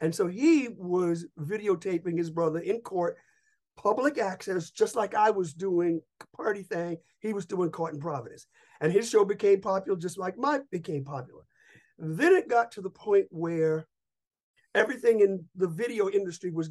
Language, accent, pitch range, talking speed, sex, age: English, American, 165-215 Hz, 170 wpm, male, 50-69